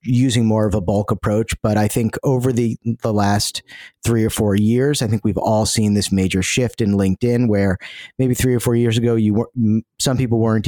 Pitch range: 100-120 Hz